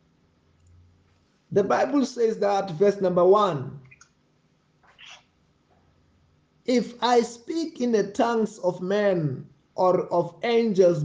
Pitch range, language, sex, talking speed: 165-225 Hz, English, male, 100 wpm